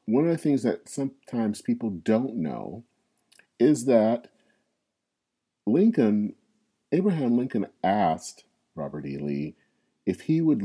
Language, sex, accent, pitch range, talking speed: English, male, American, 85-125 Hz, 120 wpm